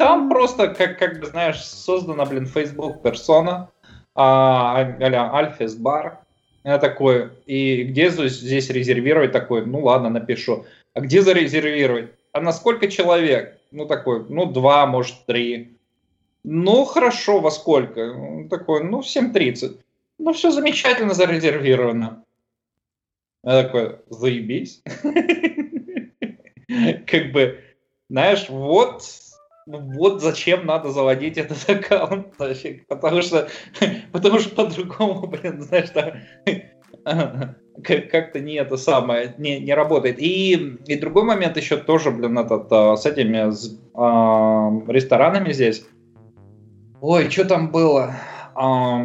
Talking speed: 115 wpm